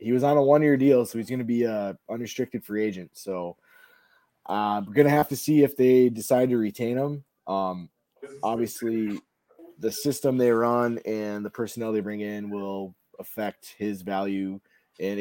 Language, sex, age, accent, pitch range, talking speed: English, male, 20-39, American, 105-135 Hz, 180 wpm